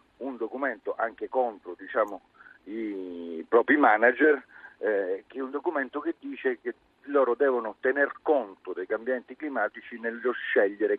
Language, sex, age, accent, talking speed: Italian, male, 40-59, native, 135 wpm